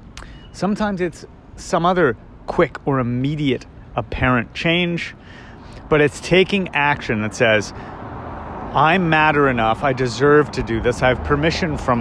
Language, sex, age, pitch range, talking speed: English, male, 40-59, 125-190 Hz, 135 wpm